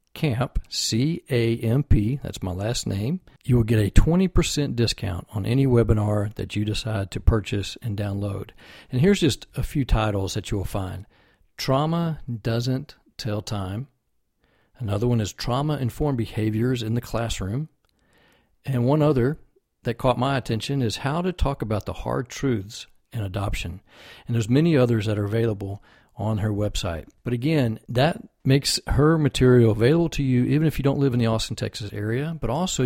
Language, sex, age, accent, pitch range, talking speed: English, male, 50-69, American, 105-135 Hz, 170 wpm